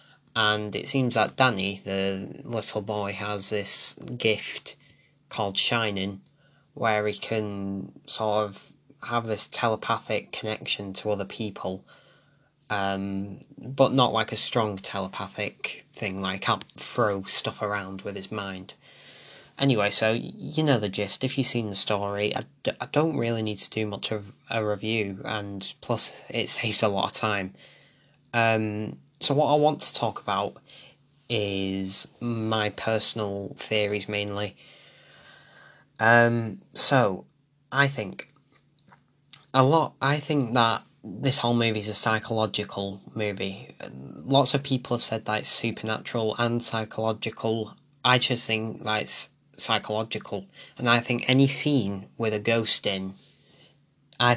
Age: 10-29